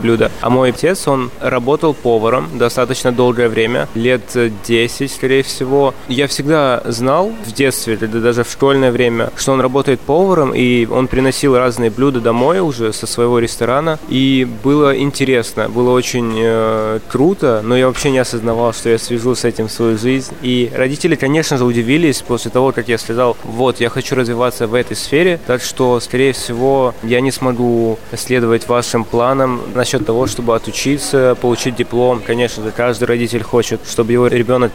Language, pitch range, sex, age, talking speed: Russian, 115-130 Hz, male, 20-39, 165 wpm